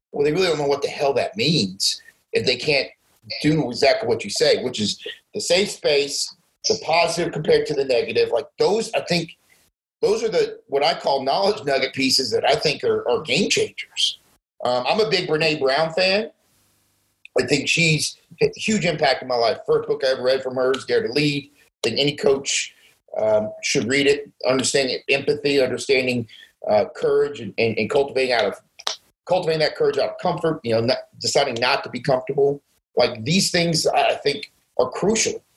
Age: 40-59